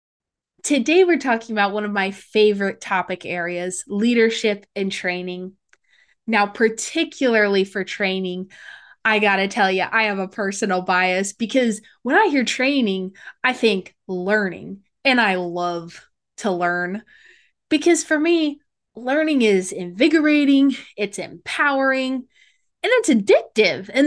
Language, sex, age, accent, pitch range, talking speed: English, female, 20-39, American, 195-280 Hz, 130 wpm